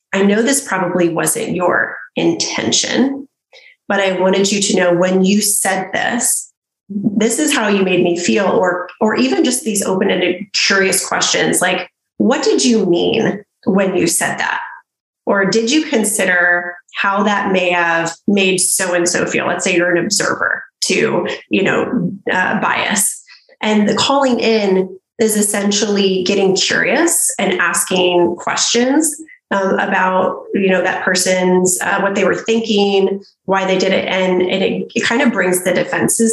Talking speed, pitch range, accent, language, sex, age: 160 wpm, 185-215 Hz, American, English, female, 30-49